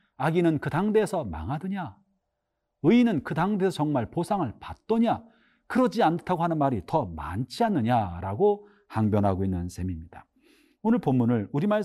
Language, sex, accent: Korean, male, native